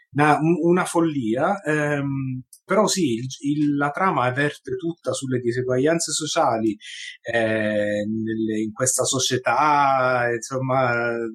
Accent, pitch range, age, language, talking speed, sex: native, 120-150 Hz, 30-49, Italian, 100 wpm, male